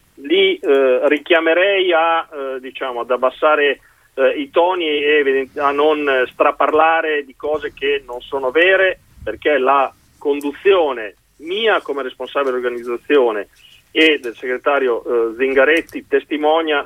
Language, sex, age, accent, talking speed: Italian, male, 40-59, native, 125 wpm